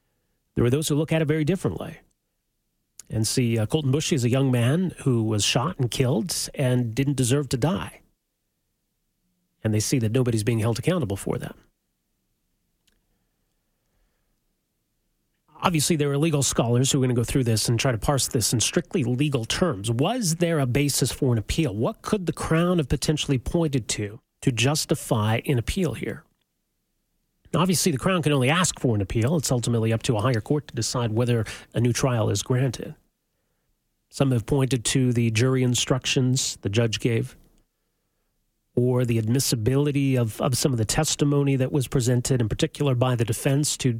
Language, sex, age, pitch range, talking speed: English, male, 30-49, 120-150 Hz, 180 wpm